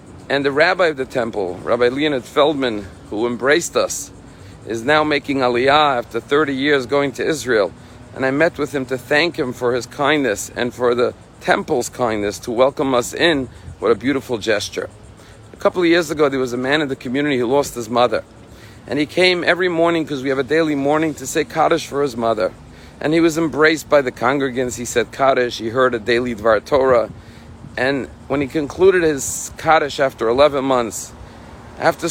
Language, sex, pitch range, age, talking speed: English, male, 120-150 Hz, 50-69, 195 wpm